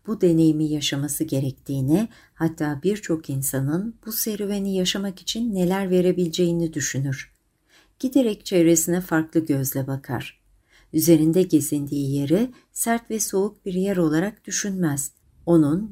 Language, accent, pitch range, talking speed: Turkish, native, 155-190 Hz, 115 wpm